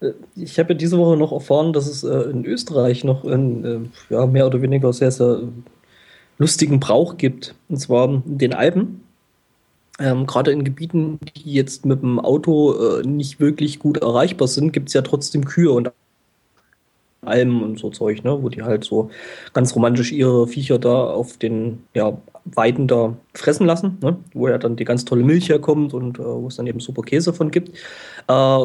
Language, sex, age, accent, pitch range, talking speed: German, male, 20-39, German, 120-155 Hz, 180 wpm